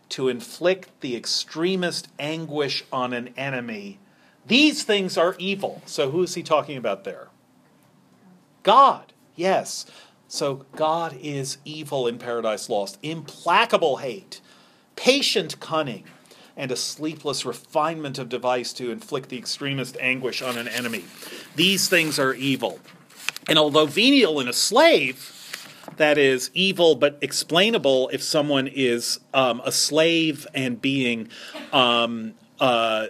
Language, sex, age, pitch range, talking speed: English, male, 40-59, 130-170 Hz, 130 wpm